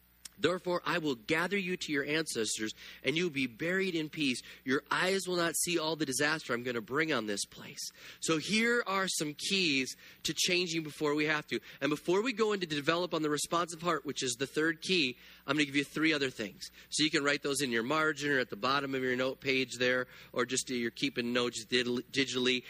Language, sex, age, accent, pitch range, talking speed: English, male, 30-49, American, 135-190 Hz, 225 wpm